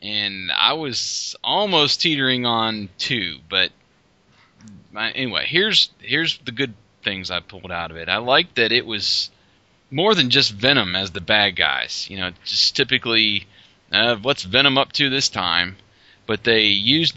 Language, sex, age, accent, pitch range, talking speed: English, male, 20-39, American, 95-120 Hz, 165 wpm